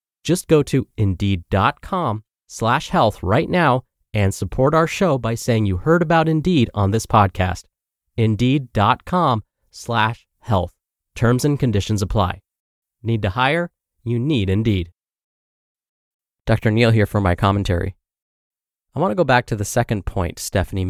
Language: English